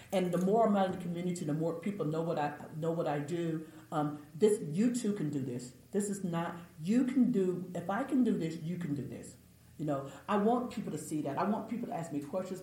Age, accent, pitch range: 40-59, American, 150-215 Hz